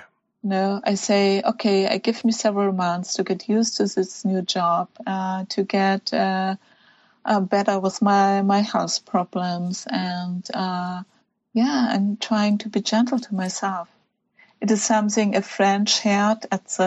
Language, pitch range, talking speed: English, 190-220 Hz, 160 wpm